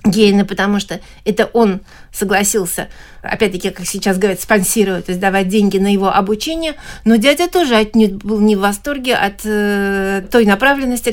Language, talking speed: Russian, 165 wpm